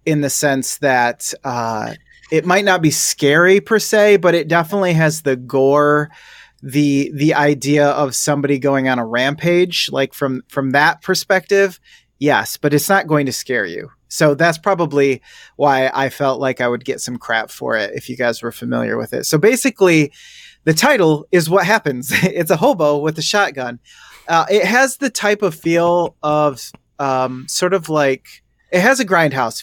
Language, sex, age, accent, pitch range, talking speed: English, male, 30-49, American, 130-170 Hz, 180 wpm